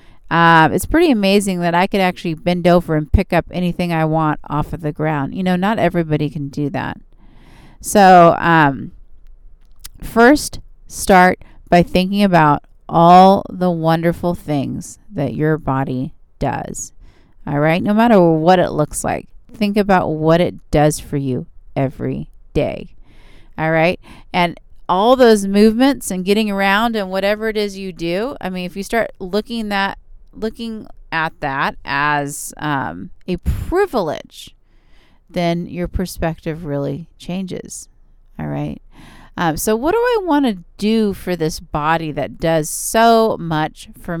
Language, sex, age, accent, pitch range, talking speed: English, female, 30-49, American, 155-200 Hz, 150 wpm